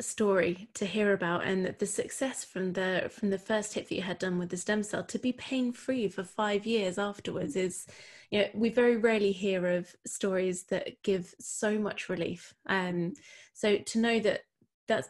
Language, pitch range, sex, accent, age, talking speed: English, 185-210 Hz, female, British, 20-39, 200 wpm